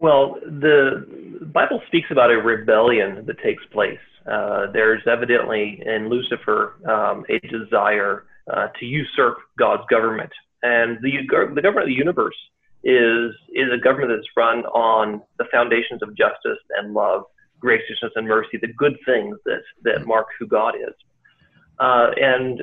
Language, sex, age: English, male, 40-59